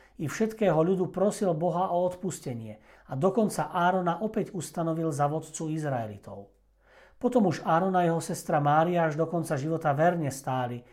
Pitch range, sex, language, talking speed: 145-180 Hz, male, Slovak, 150 wpm